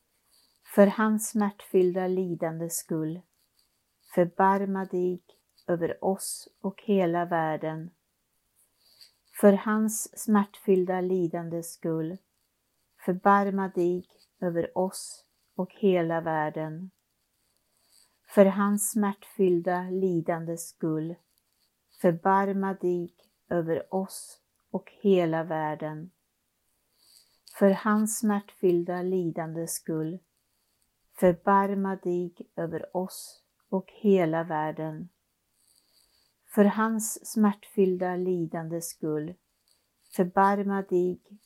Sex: female